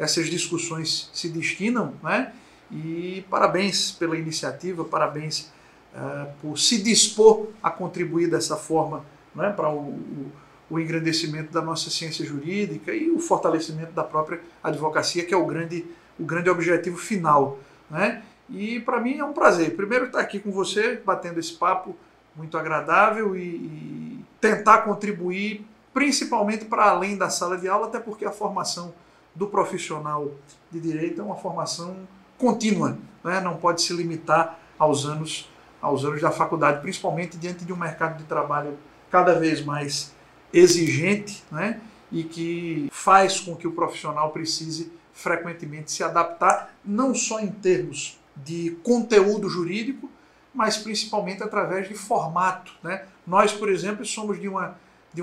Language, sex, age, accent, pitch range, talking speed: Portuguese, male, 50-69, Brazilian, 160-205 Hz, 150 wpm